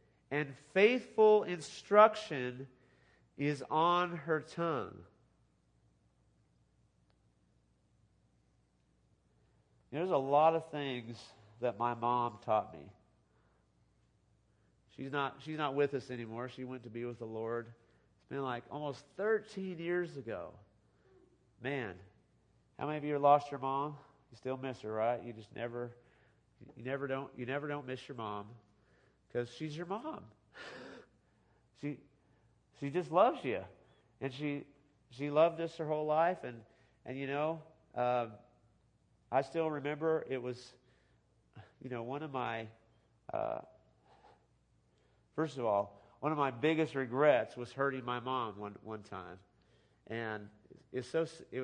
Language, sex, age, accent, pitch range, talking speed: English, male, 40-59, American, 115-150 Hz, 135 wpm